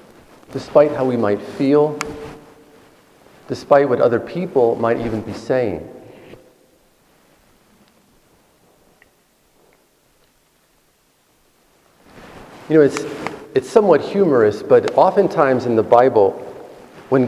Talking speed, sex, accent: 85 wpm, male, American